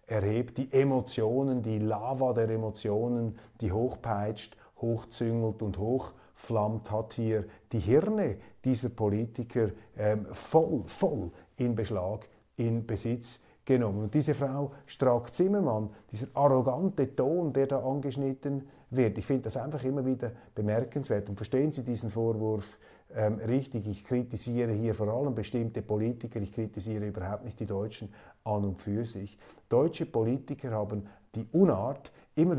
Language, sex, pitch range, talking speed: German, male, 110-140 Hz, 135 wpm